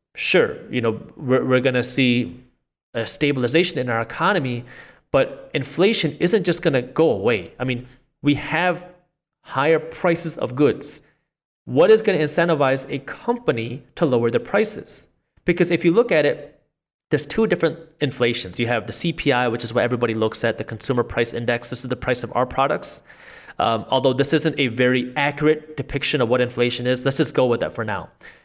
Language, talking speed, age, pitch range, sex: English, 190 wpm, 30-49, 125-155 Hz, male